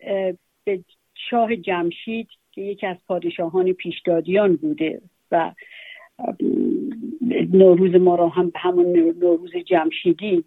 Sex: female